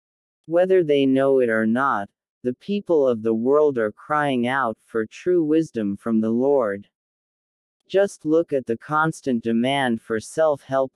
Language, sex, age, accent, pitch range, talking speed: English, male, 40-59, American, 115-155 Hz, 155 wpm